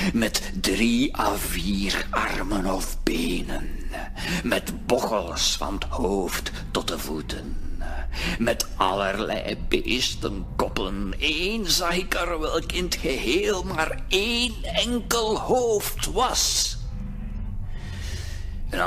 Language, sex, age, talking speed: Dutch, male, 50-69, 100 wpm